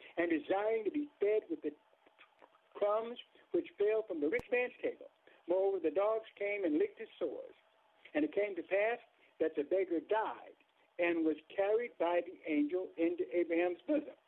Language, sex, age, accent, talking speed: English, male, 60-79, American, 170 wpm